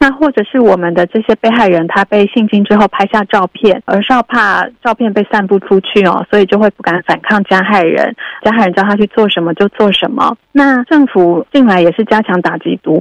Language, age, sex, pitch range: Chinese, 30-49, female, 185-225 Hz